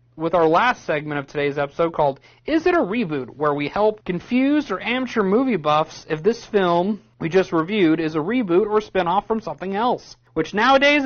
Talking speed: 200 wpm